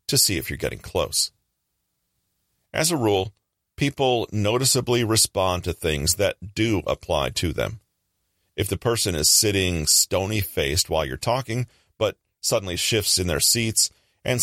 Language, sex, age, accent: English, male, 40-59, American